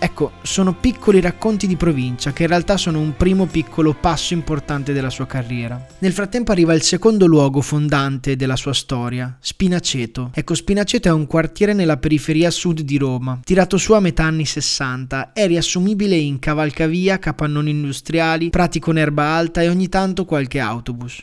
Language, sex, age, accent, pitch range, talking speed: Italian, male, 20-39, native, 145-175 Hz, 170 wpm